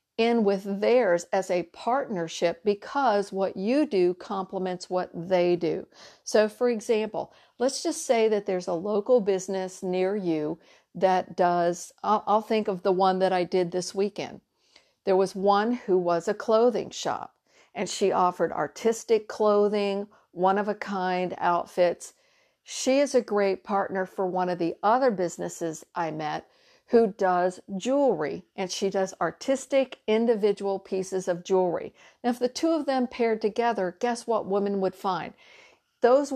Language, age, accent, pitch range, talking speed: English, 50-69, American, 185-235 Hz, 150 wpm